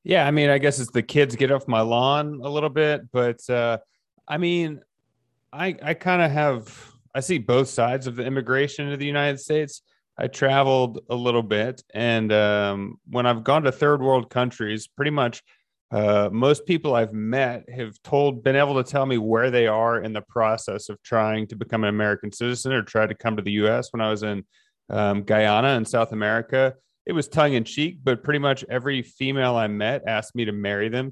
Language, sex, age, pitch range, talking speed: English, male, 30-49, 115-145 Hz, 205 wpm